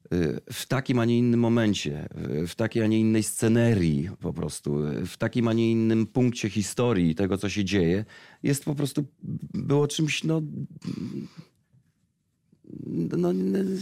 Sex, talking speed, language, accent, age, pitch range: male, 140 wpm, Polish, native, 40-59, 105-150 Hz